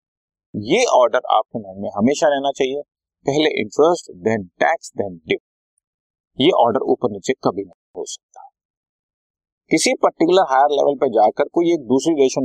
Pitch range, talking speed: 100-165 Hz, 135 wpm